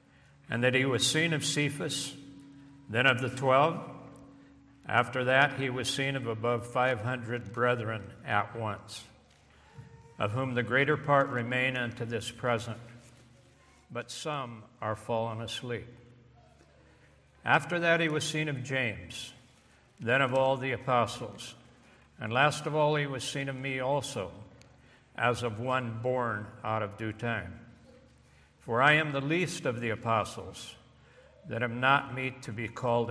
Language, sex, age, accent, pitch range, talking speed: English, male, 60-79, American, 110-135 Hz, 150 wpm